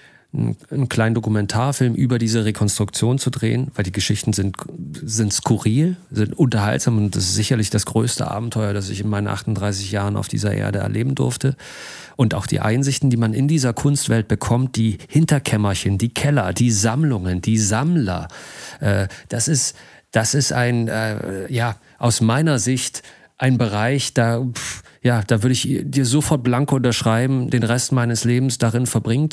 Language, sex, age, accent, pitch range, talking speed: German, male, 40-59, German, 110-135 Hz, 160 wpm